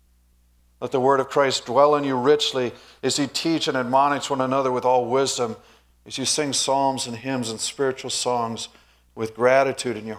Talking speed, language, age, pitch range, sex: 190 wpm, English, 50-69, 105-165 Hz, male